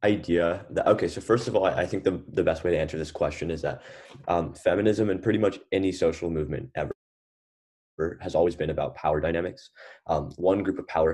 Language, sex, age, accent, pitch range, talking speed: English, male, 20-39, American, 85-100 Hz, 215 wpm